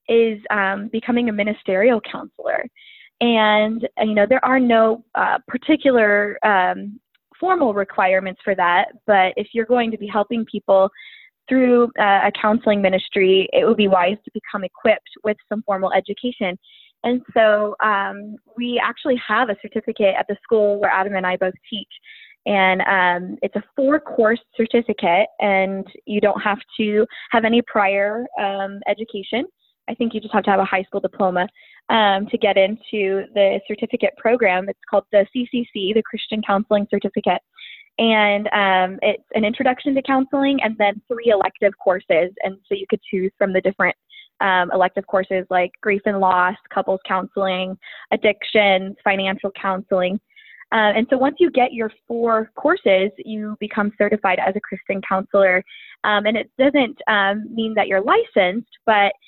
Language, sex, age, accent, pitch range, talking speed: English, female, 10-29, American, 195-230 Hz, 165 wpm